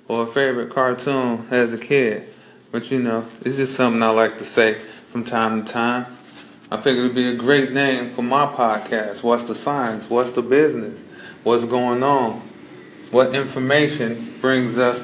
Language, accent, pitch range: English, American, 115-130 Hz